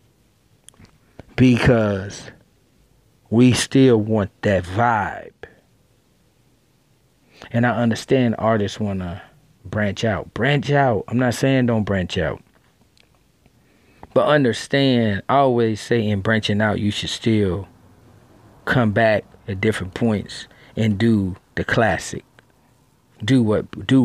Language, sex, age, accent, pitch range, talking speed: English, male, 40-59, American, 100-125 Hz, 110 wpm